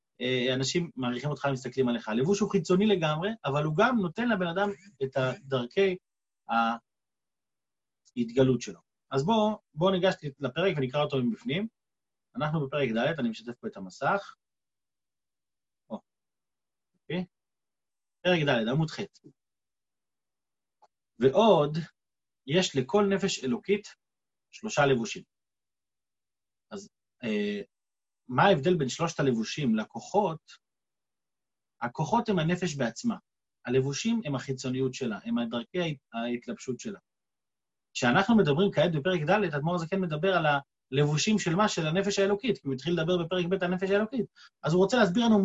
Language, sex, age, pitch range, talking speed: Hebrew, male, 30-49, 135-200 Hz, 130 wpm